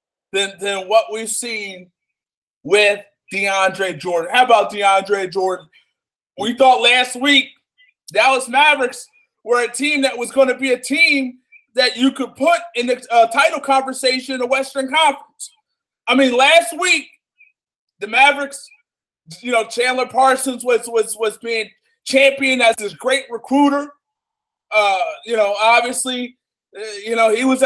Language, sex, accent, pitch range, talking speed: English, male, American, 240-285 Hz, 150 wpm